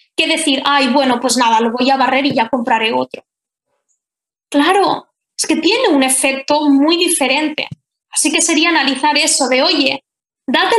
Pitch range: 260-310 Hz